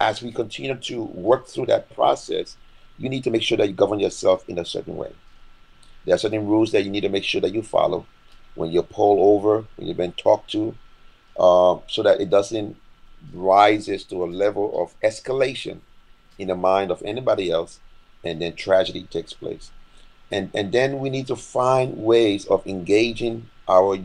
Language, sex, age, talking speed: English, male, 40-59, 190 wpm